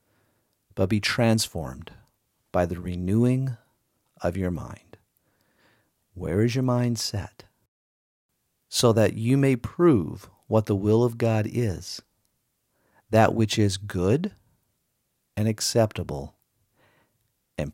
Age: 50-69